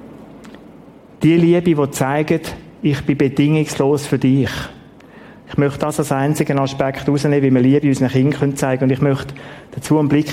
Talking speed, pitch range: 170 wpm, 135-165 Hz